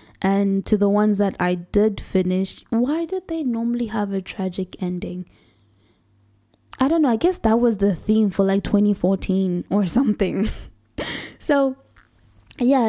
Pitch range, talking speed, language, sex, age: 175-205 Hz, 150 wpm, English, female, 10-29